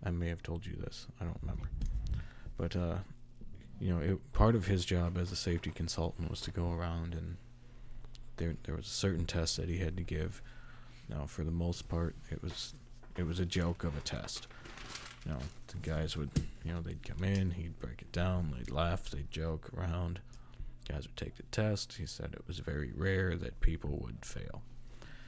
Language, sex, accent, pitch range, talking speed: English, male, American, 85-120 Hz, 205 wpm